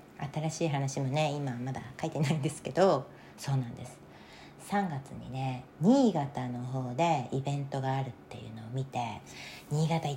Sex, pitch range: female, 130-180 Hz